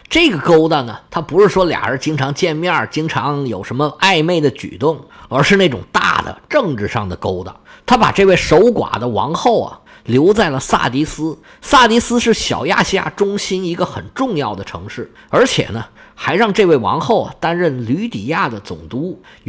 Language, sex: Chinese, male